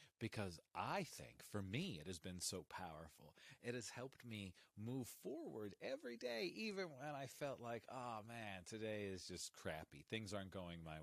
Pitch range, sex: 95-130 Hz, male